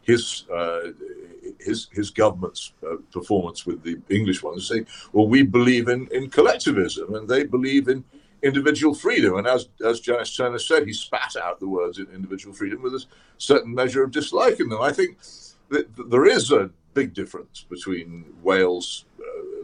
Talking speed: 170 wpm